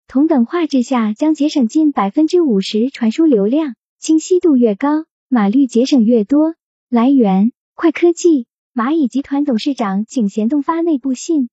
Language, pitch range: Chinese, 240-315 Hz